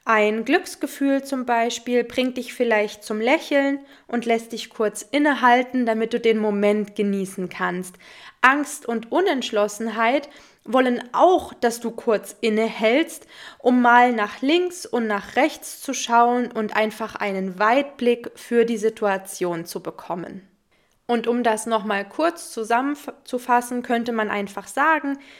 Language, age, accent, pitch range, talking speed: German, 20-39, German, 215-260 Hz, 135 wpm